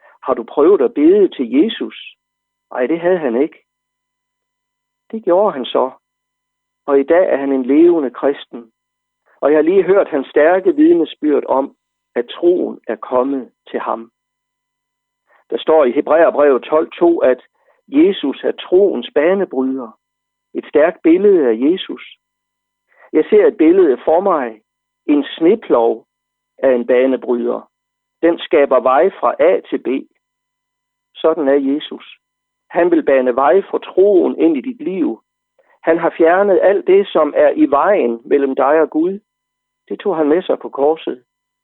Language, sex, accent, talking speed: Danish, male, native, 155 wpm